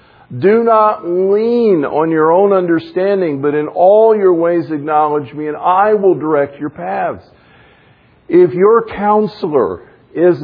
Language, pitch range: English, 150-200 Hz